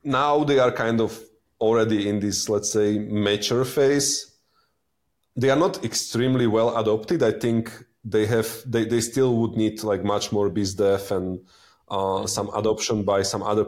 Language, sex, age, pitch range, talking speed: English, male, 30-49, 100-115 Hz, 175 wpm